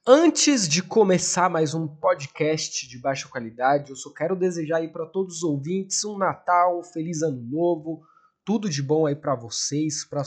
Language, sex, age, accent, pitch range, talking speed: Portuguese, male, 20-39, Brazilian, 140-185 Hz, 180 wpm